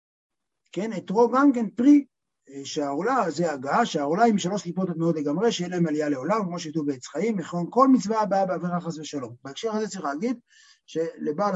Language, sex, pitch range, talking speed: Hebrew, male, 170-225 Hz, 180 wpm